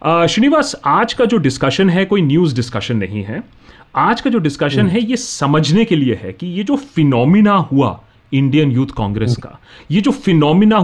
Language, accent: Hindi, native